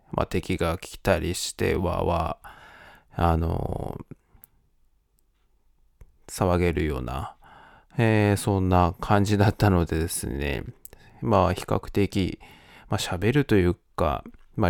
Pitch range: 85-100 Hz